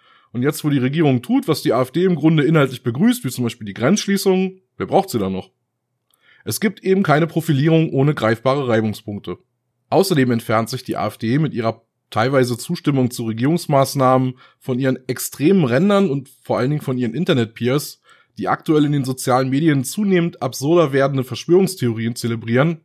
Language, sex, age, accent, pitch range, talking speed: German, male, 30-49, German, 120-155 Hz, 170 wpm